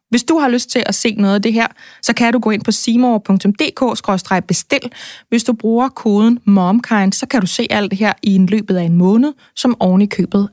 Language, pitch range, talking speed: Danish, 185-235 Hz, 230 wpm